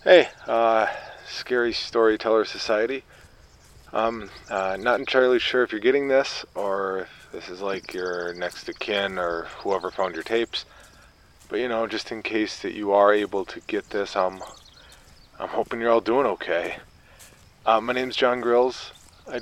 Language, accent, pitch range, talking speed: English, American, 90-120 Hz, 165 wpm